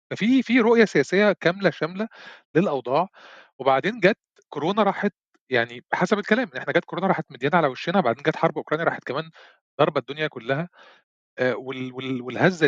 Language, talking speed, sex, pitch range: Arabic, 145 wpm, male, 145-205 Hz